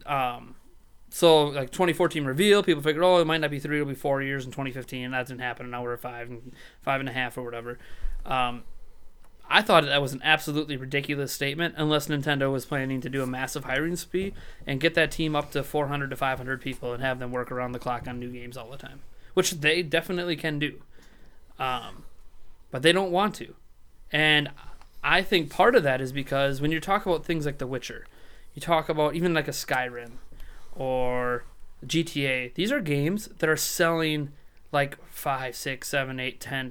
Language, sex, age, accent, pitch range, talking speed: English, male, 20-39, American, 130-165 Hz, 205 wpm